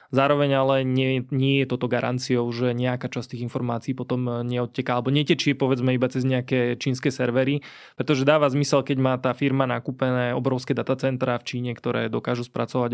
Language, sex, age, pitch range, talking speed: Slovak, male, 20-39, 120-135 Hz, 165 wpm